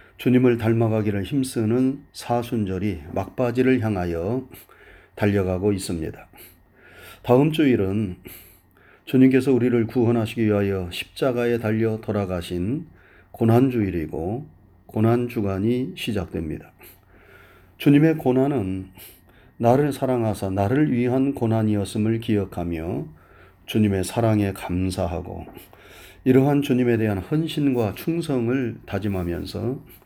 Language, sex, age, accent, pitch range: Korean, male, 30-49, native, 95-125 Hz